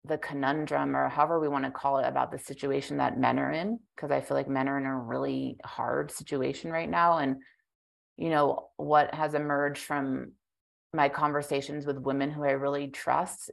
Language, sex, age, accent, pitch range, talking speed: English, female, 30-49, American, 135-155 Hz, 195 wpm